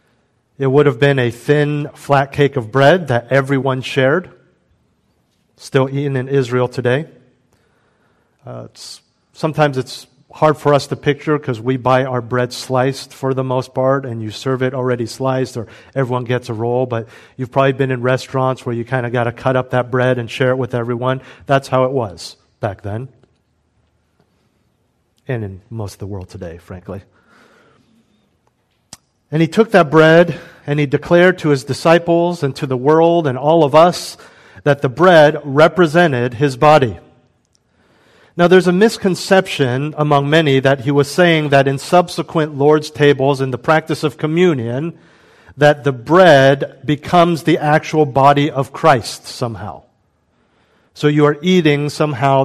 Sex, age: male, 40-59